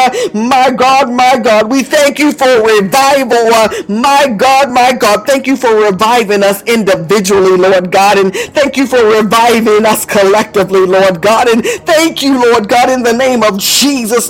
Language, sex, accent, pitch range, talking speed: English, female, American, 230-295 Hz, 175 wpm